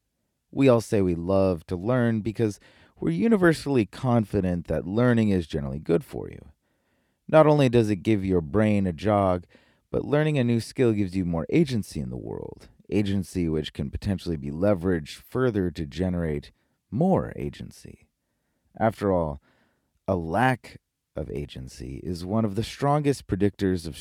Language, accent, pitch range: English, American, 85-115 Hz